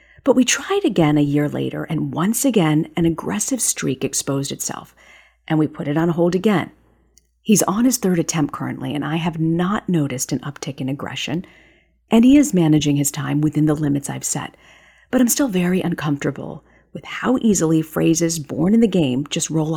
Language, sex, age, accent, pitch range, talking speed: English, female, 40-59, American, 150-200 Hz, 190 wpm